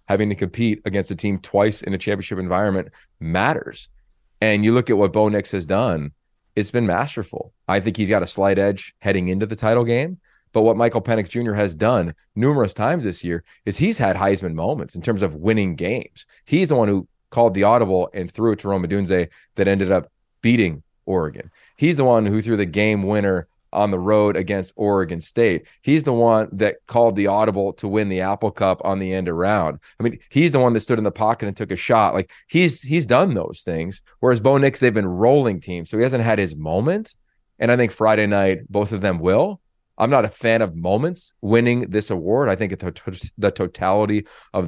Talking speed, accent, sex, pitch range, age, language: 215 wpm, American, male, 95-115 Hz, 30-49, English